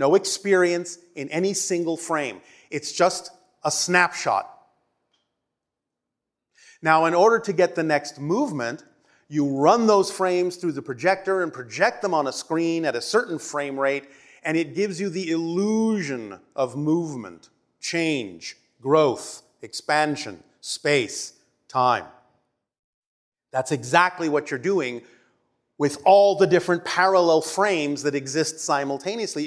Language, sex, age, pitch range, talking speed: German, male, 30-49, 140-185 Hz, 130 wpm